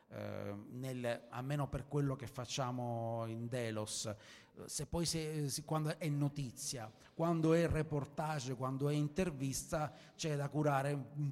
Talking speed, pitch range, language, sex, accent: 145 wpm, 125-150 Hz, Italian, male, native